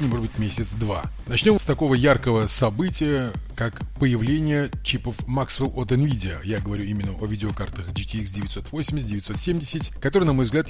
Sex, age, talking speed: male, 30-49, 145 wpm